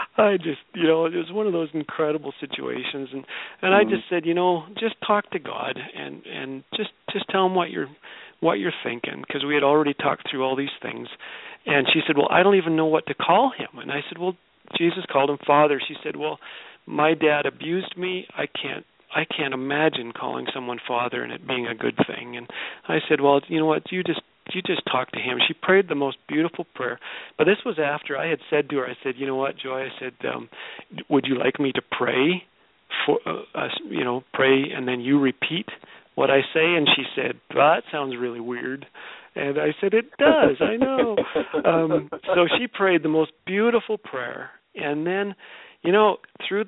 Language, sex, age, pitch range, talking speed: English, male, 40-59, 135-185 Hz, 215 wpm